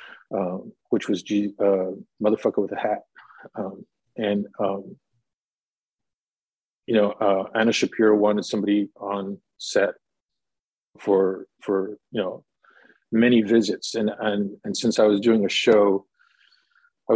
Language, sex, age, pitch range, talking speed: English, male, 40-59, 100-120 Hz, 130 wpm